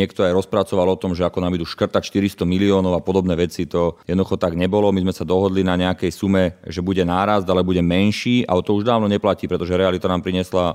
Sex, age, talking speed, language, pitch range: male, 30-49, 230 wpm, Slovak, 90-100 Hz